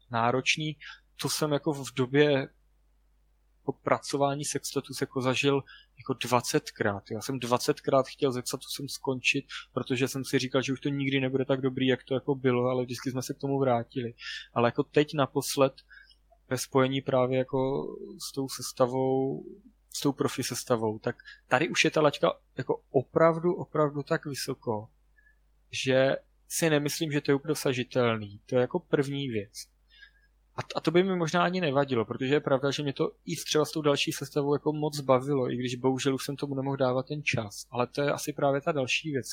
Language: Slovak